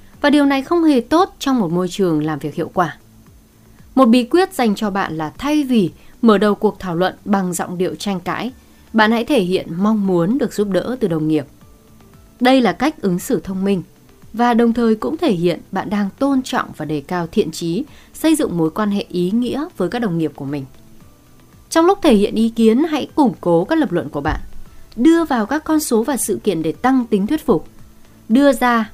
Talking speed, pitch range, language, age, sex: 225 wpm, 180-265 Hz, Vietnamese, 20-39, female